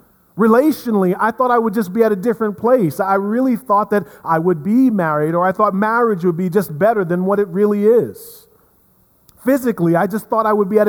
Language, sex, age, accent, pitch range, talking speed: English, male, 40-59, American, 175-215 Hz, 220 wpm